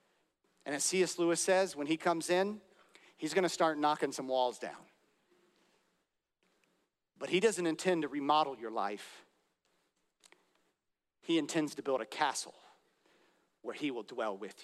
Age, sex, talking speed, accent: 40-59, male, 145 wpm, American